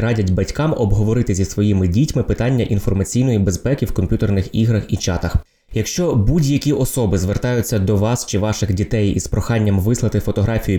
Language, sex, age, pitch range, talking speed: Ukrainian, male, 20-39, 100-125 Hz, 150 wpm